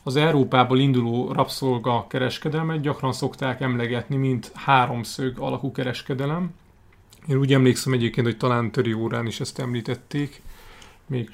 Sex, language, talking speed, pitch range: male, Hungarian, 120 wpm, 120-140 Hz